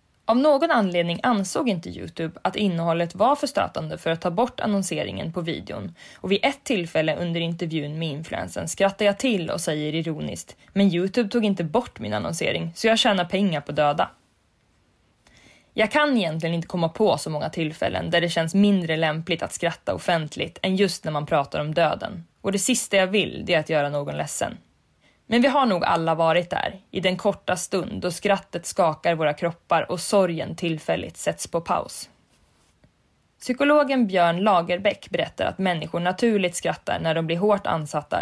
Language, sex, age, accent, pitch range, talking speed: English, female, 20-39, Swedish, 165-200 Hz, 175 wpm